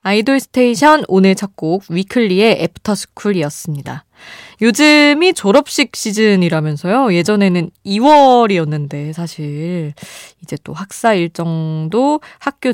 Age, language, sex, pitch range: 20-39, Korean, female, 155-215 Hz